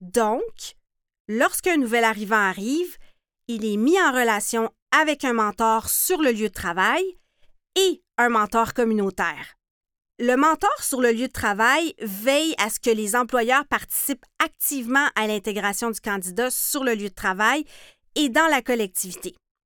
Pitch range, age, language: 210-285 Hz, 50-69, French